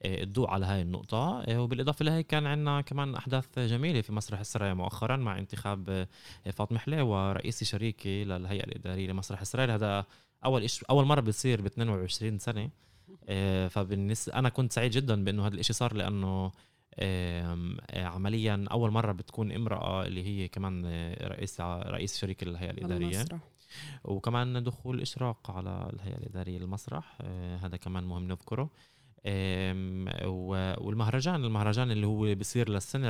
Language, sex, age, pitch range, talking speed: Arabic, male, 20-39, 95-120 Hz, 135 wpm